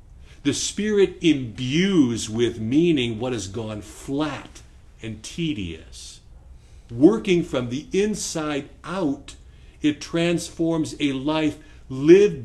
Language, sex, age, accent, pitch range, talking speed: English, male, 50-69, American, 95-155 Hz, 100 wpm